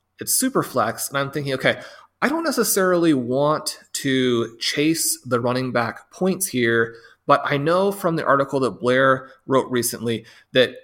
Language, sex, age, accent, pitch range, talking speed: English, male, 30-49, American, 120-160 Hz, 160 wpm